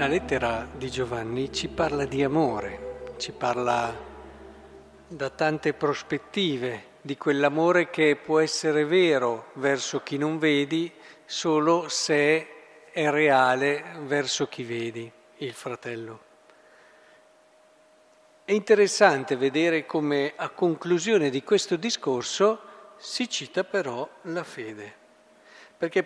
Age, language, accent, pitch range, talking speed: 50-69, Italian, native, 140-185 Hz, 110 wpm